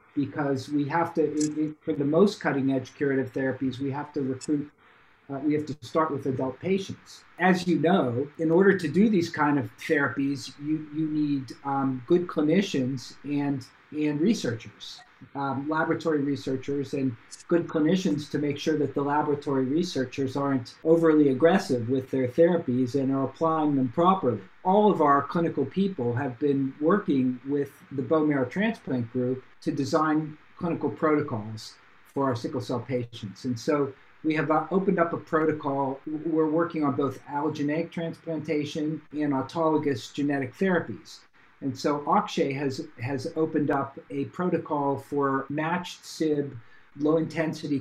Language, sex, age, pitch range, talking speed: English, male, 50-69, 135-160 Hz, 155 wpm